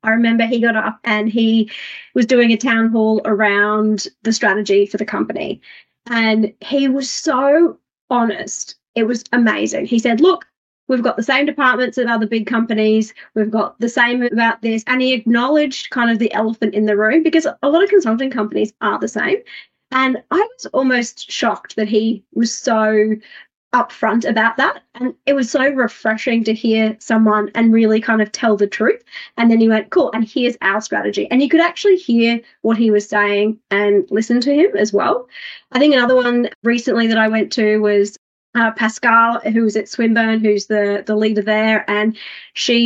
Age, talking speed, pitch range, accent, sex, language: 30-49, 190 wpm, 215-255 Hz, Australian, female, English